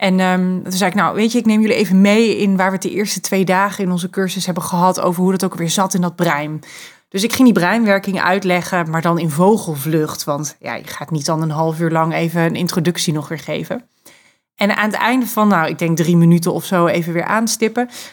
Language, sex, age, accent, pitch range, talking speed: Dutch, female, 30-49, Dutch, 175-210 Hz, 250 wpm